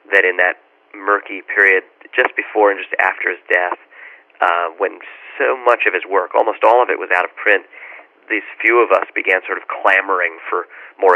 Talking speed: 200 wpm